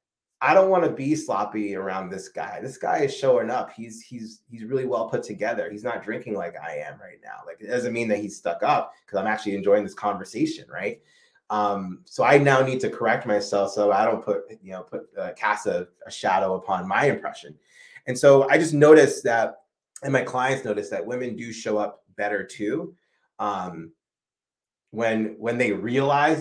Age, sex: 30-49, male